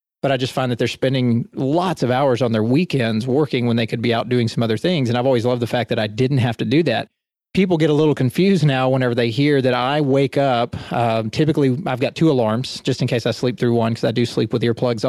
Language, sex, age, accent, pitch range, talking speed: English, male, 30-49, American, 120-145 Hz, 270 wpm